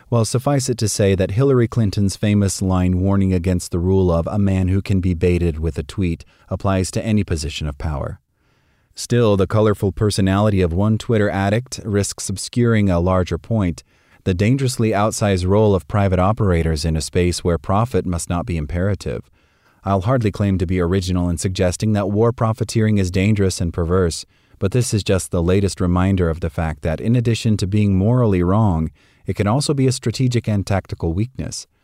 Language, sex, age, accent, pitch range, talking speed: English, male, 30-49, American, 90-110 Hz, 190 wpm